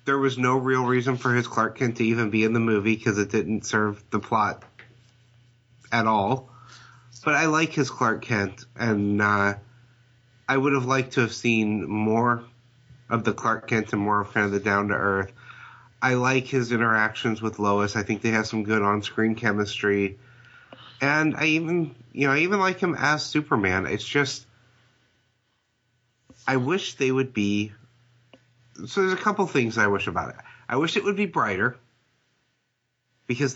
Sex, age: male, 30-49